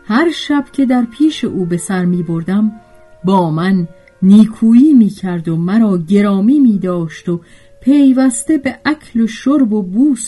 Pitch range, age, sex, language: 160-245 Hz, 40-59, female, Persian